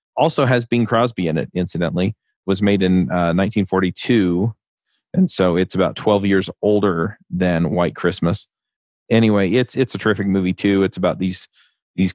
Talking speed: 170 wpm